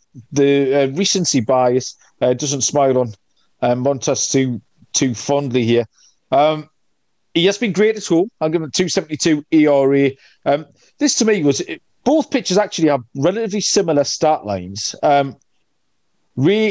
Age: 40-59